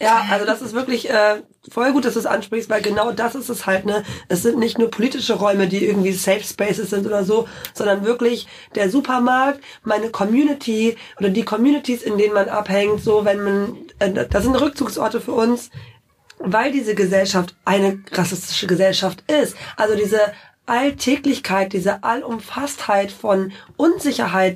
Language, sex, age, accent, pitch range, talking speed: German, female, 20-39, German, 200-235 Hz, 165 wpm